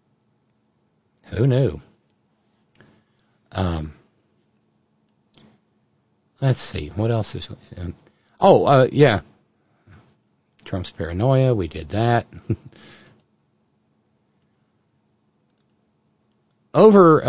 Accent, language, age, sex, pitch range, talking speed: American, English, 50-69, male, 105-145 Hz, 60 wpm